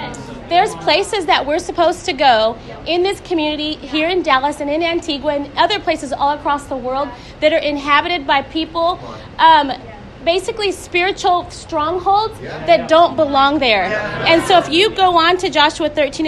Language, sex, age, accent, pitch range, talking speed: English, female, 30-49, American, 295-350 Hz, 160 wpm